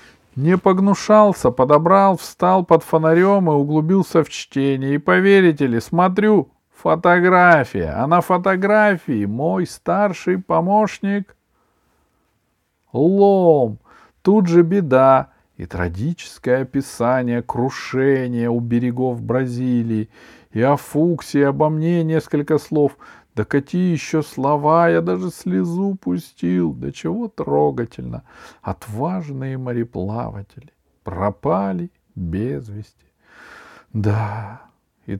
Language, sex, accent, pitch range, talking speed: Russian, male, native, 110-170 Hz, 100 wpm